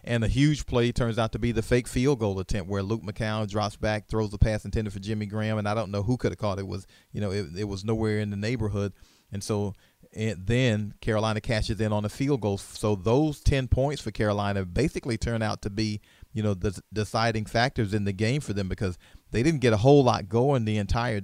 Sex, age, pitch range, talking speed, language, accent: male, 40-59, 105-125 Hz, 245 wpm, English, American